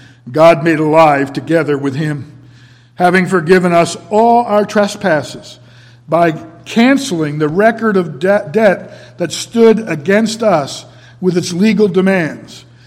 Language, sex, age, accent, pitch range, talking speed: English, male, 60-79, American, 120-195 Hz, 120 wpm